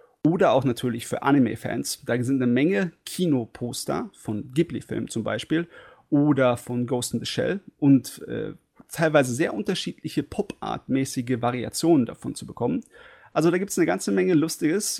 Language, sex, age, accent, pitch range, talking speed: German, male, 30-49, German, 125-160 Hz, 155 wpm